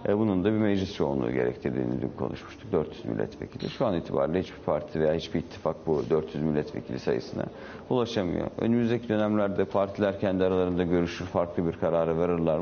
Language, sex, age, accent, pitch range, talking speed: Turkish, male, 50-69, native, 80-100 Hz, 155 wpm